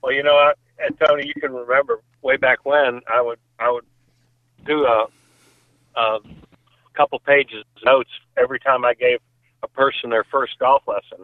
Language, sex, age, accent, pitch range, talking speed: English, male, 50-69, American, 125-150 Hz, 165 wpm